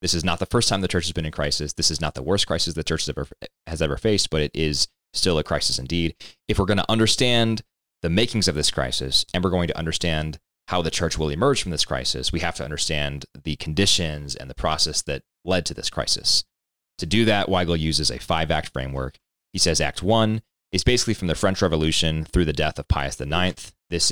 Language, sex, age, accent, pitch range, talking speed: English, male, 30-49, American, 75-95 Hz, 235 wpm